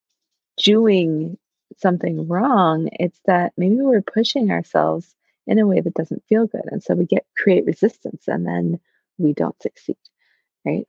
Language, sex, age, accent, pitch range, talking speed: English, female, 20-39, American, 155-210 Hz, 155 wpm